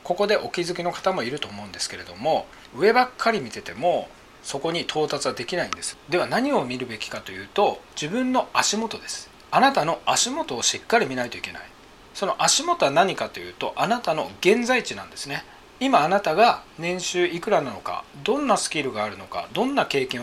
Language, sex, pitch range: Japanese, male, 150-240 Hz